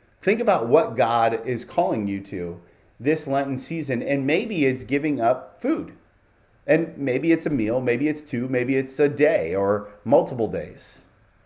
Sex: male